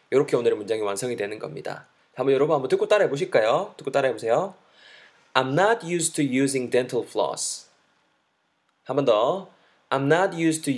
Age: 20-39